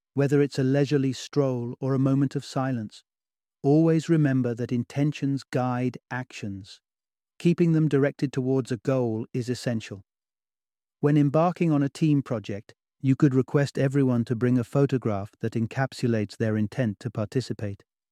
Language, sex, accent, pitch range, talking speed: English, male, British, 115-140 Hz, 145 wpm